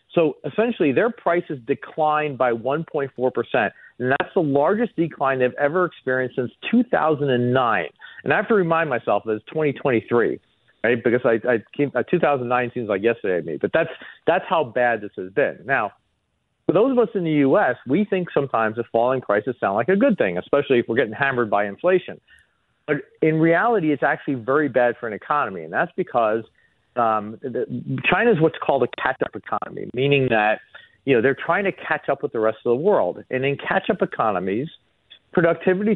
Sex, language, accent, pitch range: male, English, American, 120-165 Hz